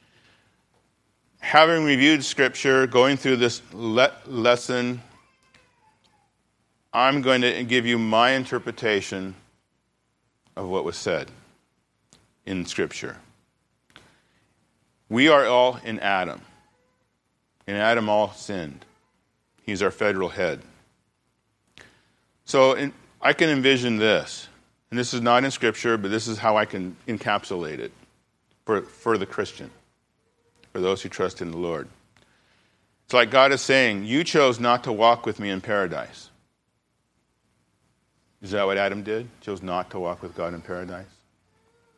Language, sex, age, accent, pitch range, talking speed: English, male, 40-59, American, 95-125 Hz, 130 wpm